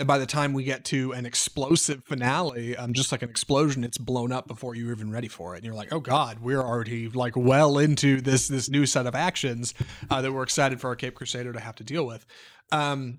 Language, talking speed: English, 245 wpm